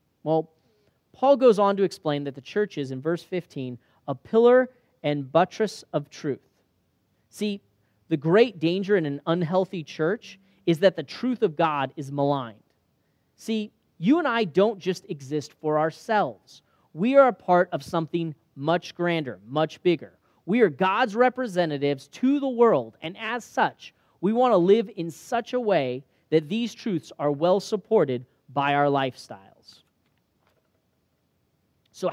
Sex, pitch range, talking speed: male, 140-200 Hz, 150 wpm